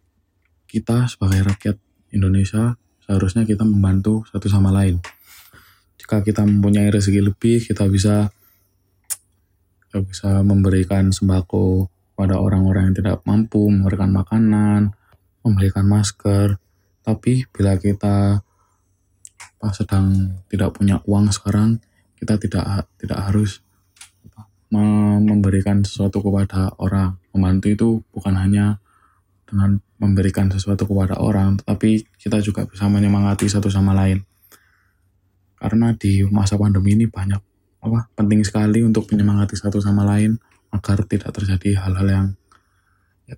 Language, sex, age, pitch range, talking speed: Indonesian, male, 20-39, 95-105 Hz, 120 wpm